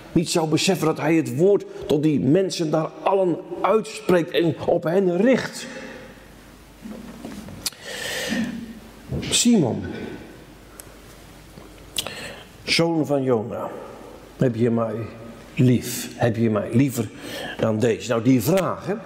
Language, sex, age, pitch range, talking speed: Dutch, male, 50-69, 130-215 Hz, 105 wpm